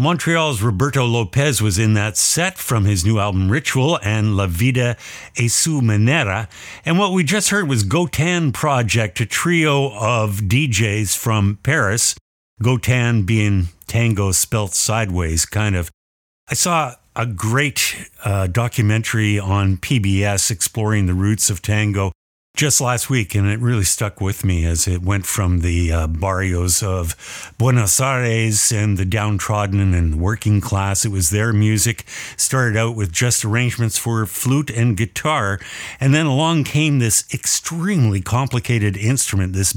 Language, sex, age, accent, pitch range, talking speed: English, male, 50-69, American, 95-120 Hz, 150 wpm